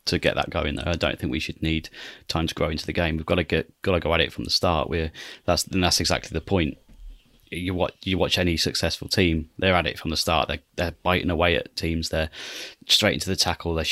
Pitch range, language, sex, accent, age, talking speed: 85-95 Hz, English, male, British, 30-49, 260 wpm